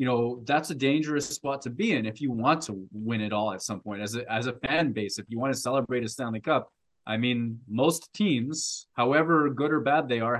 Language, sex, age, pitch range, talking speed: English, male, 20-39, 110-155 Hz, 250 wpm